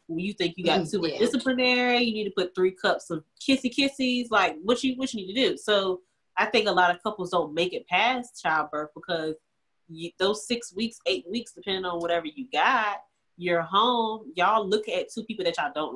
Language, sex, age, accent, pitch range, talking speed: English, female, 30-49, American, 170-225 Hz, 215 wpm